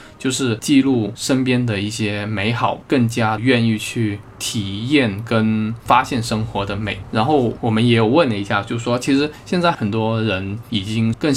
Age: 20-39